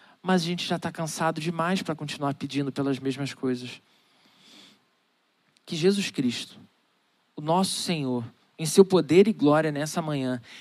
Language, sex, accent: Portuguese, male, Brazilian